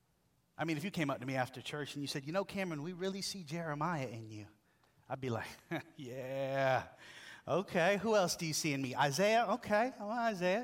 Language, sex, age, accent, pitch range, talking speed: English, male, 30-49, American, 150-245 Hz, 210 wpm